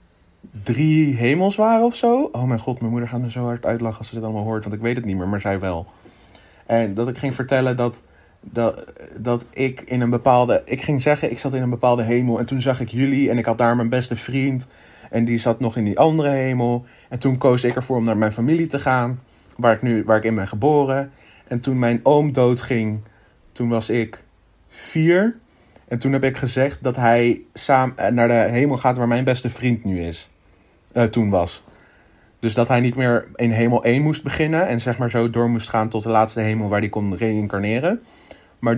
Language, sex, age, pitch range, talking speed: Dutch, male, 30-49, 110-130 Hz, 225 wpm